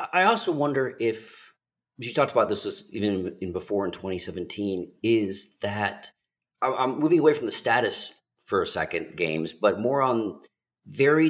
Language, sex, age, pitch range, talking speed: English, male, 40-59, 95-120 Hz, 150 wpm